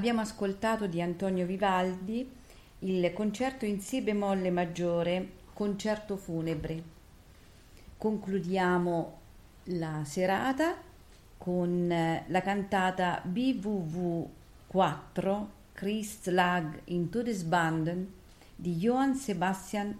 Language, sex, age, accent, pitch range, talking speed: Italian, female, 40-59, native, 165-210 Hz, 85 wpm